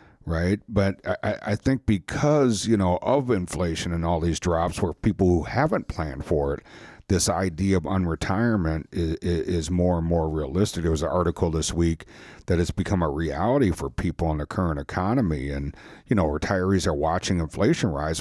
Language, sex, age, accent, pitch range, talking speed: English, male, 60-79, American, 80-95 Hz, 185 wpm